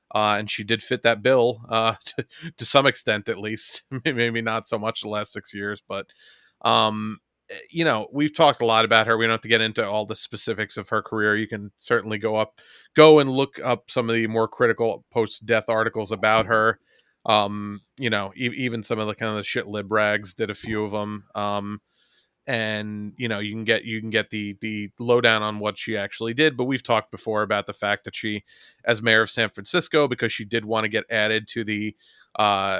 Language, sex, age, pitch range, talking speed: English, male, 30-49, 105-115 Hz, 225 wpm